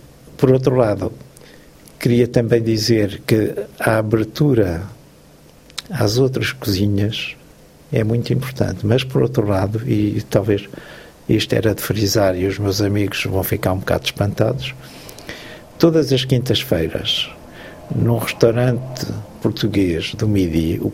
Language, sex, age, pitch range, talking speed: Spanish, male, 60-79, 105-130 Hz, 125 wpm